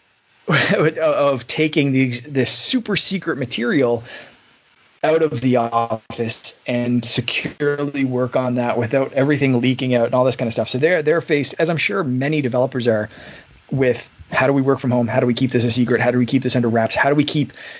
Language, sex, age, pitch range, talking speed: English, male, 20-39, 120-140 Hz, 205 wpm